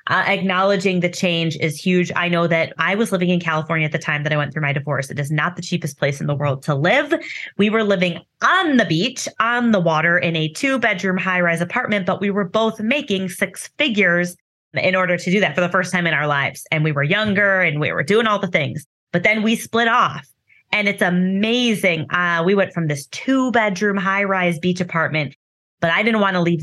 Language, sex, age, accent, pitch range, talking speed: English, female, 20-39, American, 160-210 Hz, 230 wpm